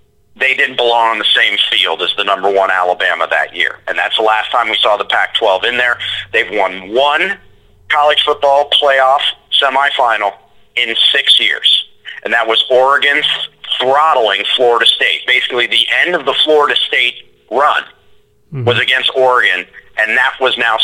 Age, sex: 40-59, male